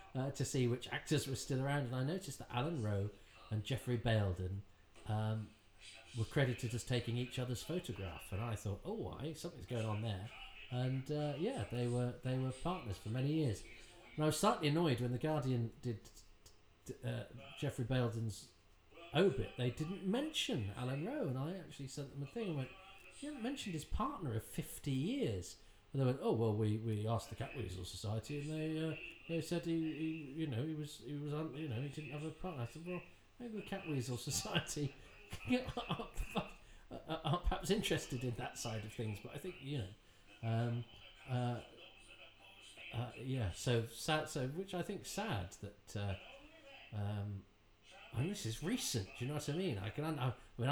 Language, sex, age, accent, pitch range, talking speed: English, male, 40-59, British, 110-150 Hz, 200 wpm